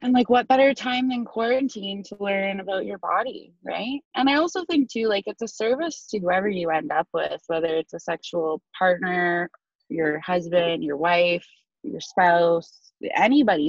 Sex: female